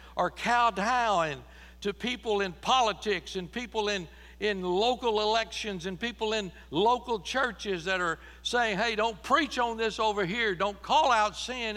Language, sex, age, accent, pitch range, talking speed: English, male, 60-79, American, 180-240 Hz, 160 wpm